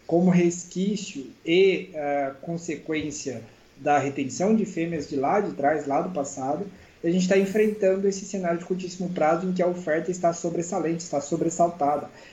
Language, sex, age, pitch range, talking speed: Portuguese, male, 20-39, 155-195 Hz, 155 wpm